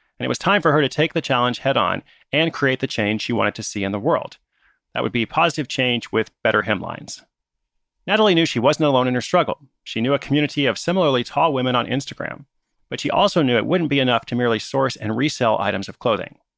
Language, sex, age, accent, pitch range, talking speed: English, male, 30-49, American, 120-155 Hz, 235 wpm